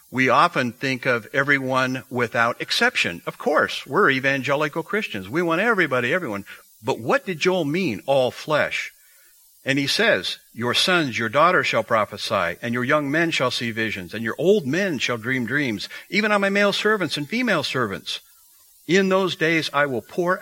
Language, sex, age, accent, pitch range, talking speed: English, male, 60-79, American, 115-165 Hz, 175 wpm